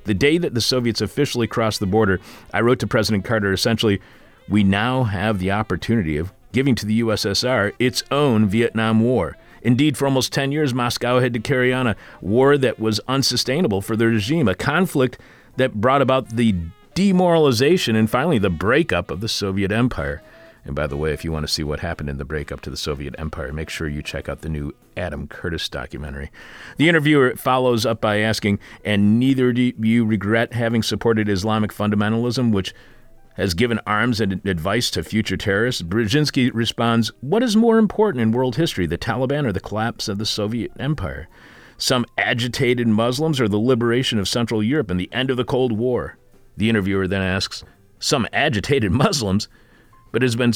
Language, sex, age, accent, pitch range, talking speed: English, male, 40-59, American, 100-125 Hz, 190 wpm